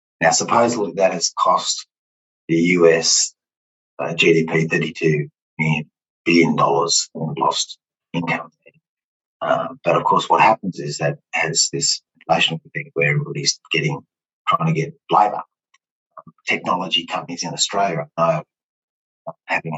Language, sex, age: English, male, 30-49